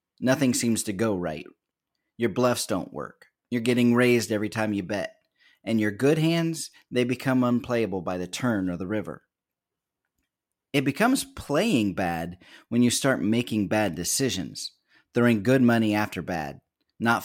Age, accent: 30-49, American